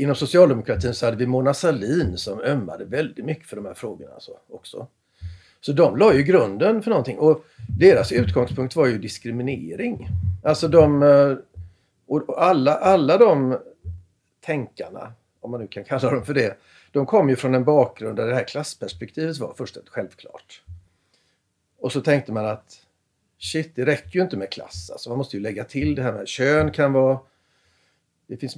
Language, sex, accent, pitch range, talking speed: Swedish, male, native, 95-140 Hz, 175 wpm